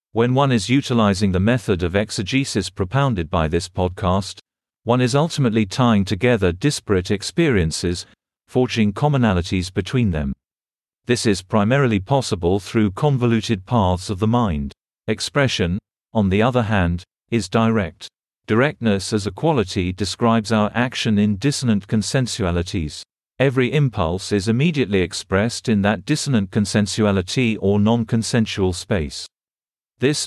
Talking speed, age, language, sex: 125 wpm, 50-69, English, male